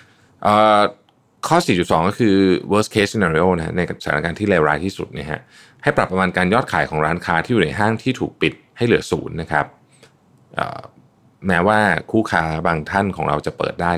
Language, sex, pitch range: Thai, male, 85-105 Hz